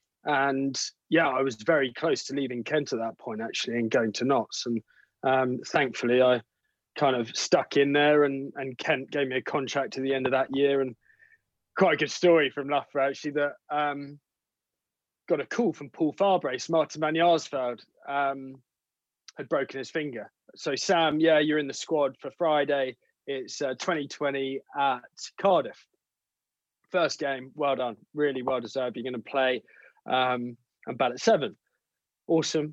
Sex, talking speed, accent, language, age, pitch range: male, 170 wpm, British, English, 20-39, 135-165 Hz